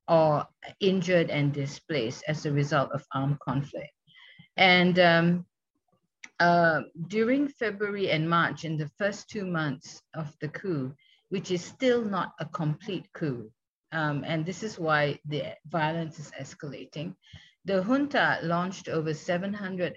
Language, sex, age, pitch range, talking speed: English, female, 50-69, 145-175 Hz, 140 wpm